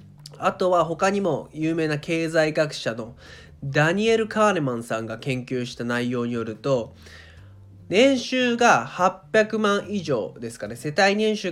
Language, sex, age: Japanese, male, 20-39